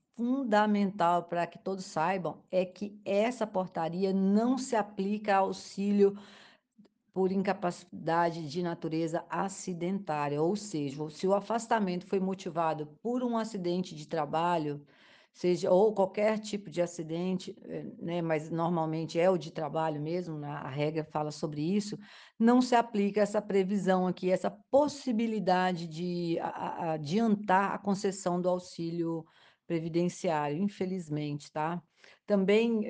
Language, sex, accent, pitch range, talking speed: Portuguese, female, Brazilian, 165-200 Hz, 120 wpm